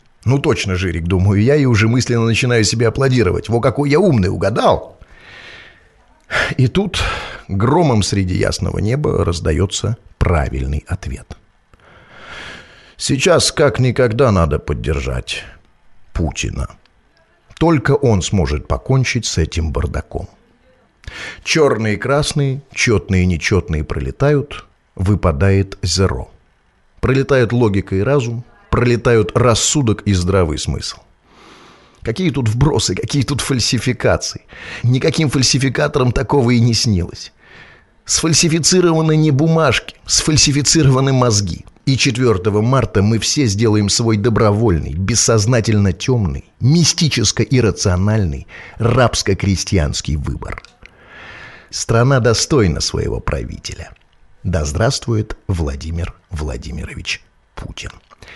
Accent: native